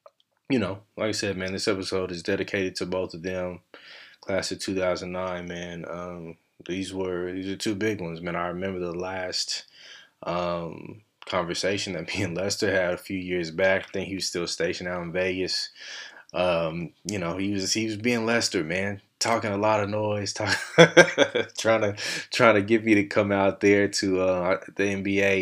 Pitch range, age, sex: 90-105 Hz, 20-39, male